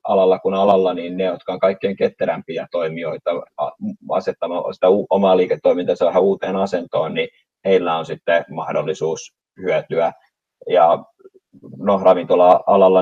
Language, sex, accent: Finnish, male, native